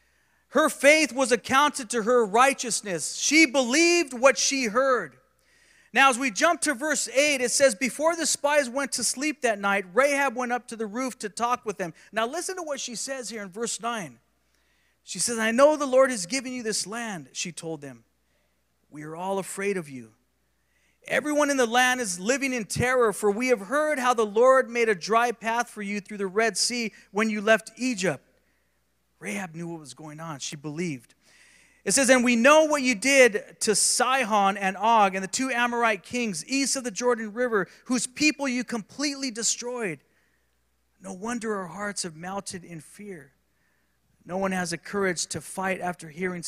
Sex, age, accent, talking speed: male, 40-59, American, 195 wpm